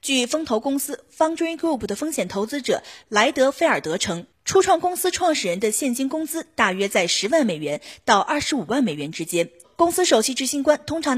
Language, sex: Chinese, female